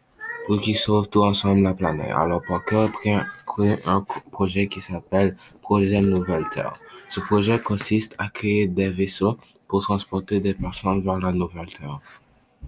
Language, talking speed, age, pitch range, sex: French, 150 wpm, 20-39, 95-100 Hz, male